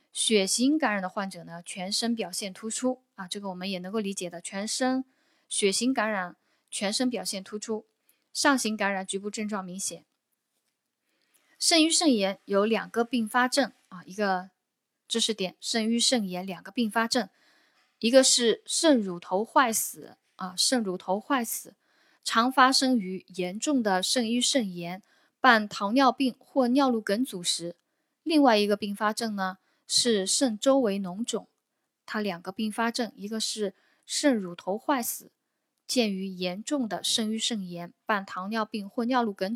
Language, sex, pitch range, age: Chinese, female, 190-255 Hz, 10-29